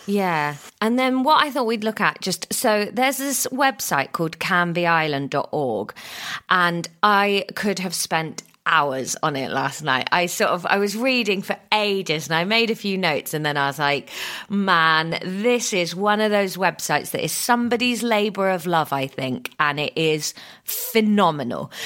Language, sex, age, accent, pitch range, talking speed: English, female, 30-49, British, 170-215 Hz, 175 wpm